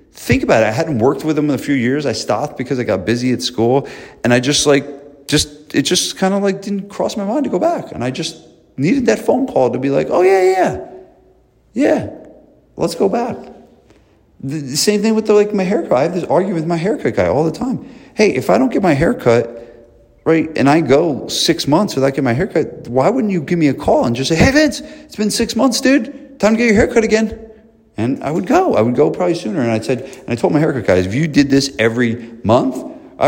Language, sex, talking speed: English, male, 245 wpm